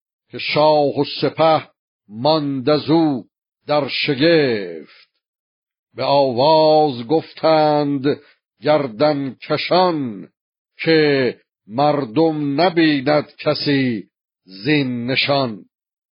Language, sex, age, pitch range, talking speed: Persian, male, 50-69, 130-155 Hz, 70 wpm